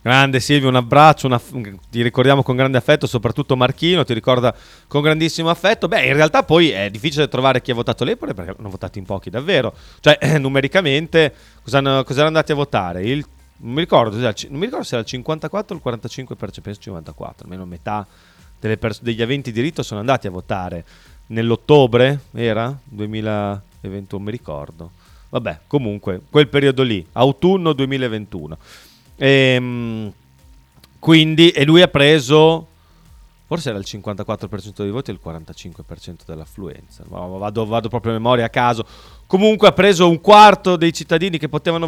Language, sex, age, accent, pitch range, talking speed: Italian, male, 30-49, native, 100-150 Hz, 165 wpm